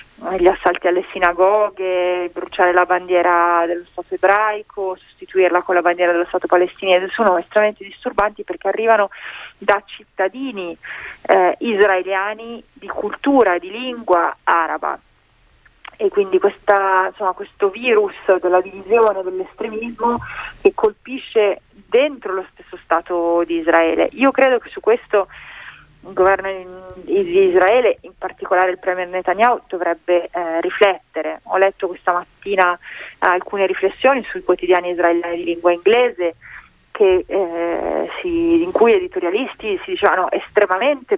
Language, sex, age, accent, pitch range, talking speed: Italian, female, 30-49, native, 180-235 Hz, 125 wpm